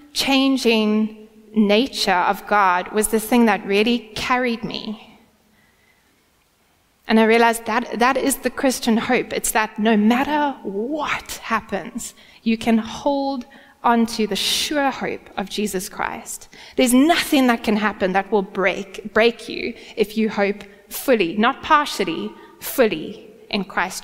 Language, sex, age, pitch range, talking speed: English, female, 20-39, 210-260 Hz, 135 wpm